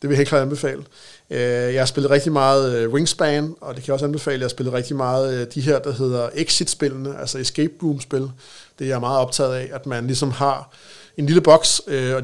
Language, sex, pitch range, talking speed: Danish, male, 130-145 Hz, 220 wpm